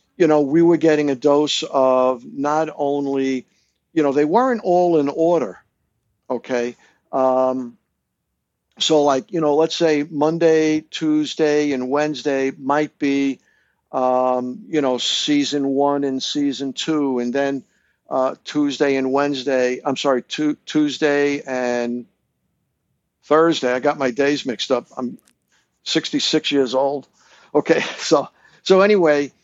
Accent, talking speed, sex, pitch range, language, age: American, 130 wpm, male, 130-155 Hz, English, 50-69